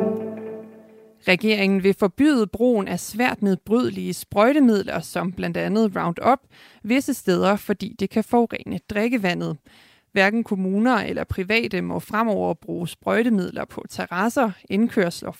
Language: Danish